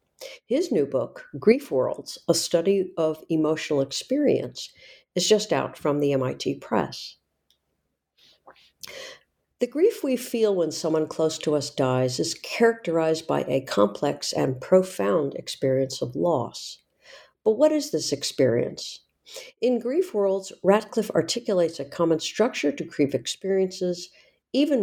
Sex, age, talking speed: female, 60-79, 130 wpm